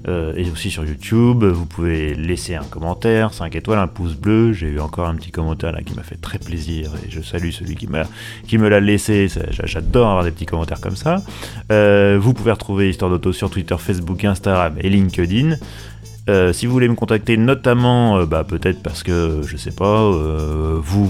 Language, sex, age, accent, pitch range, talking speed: French, male, 30-49, French, 85-110 Hz, 210 wpm